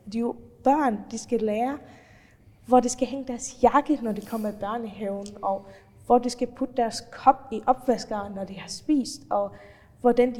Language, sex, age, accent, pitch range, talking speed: Danish, female, 20-39, native, 215-260 Hz, 195 wpm